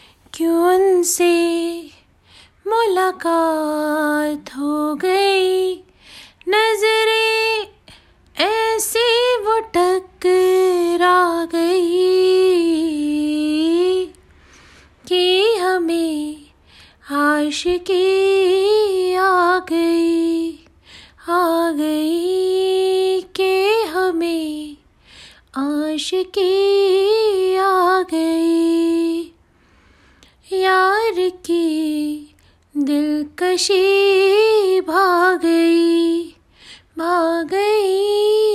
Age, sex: 20-39, female